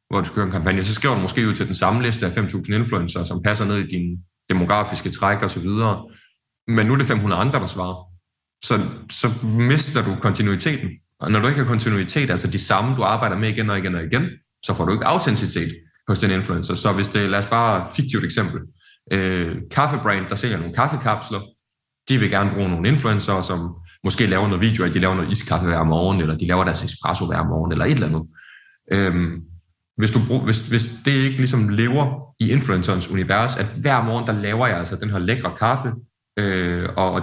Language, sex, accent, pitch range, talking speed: Danish, male, native, 95-115 Hz, 220 wpm